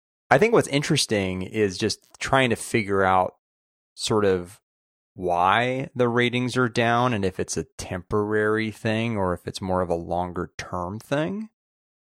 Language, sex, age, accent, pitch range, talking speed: English, male, 30-49, American, 90-110 Hz, 160 wpm